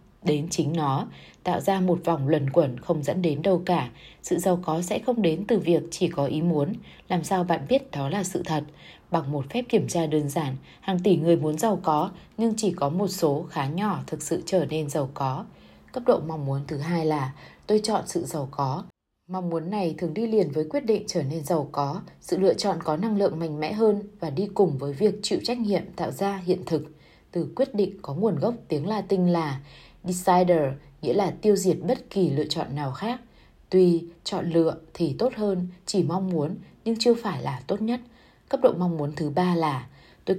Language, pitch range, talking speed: Vietnamese, 155-195 Hz, 220 wpm